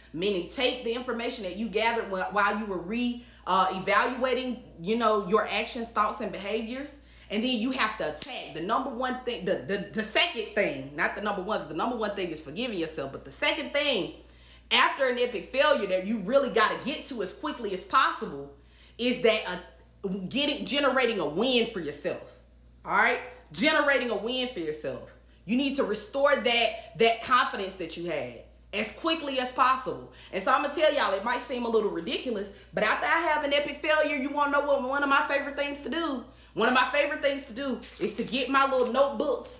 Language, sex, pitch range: English, female, 210-275 Hz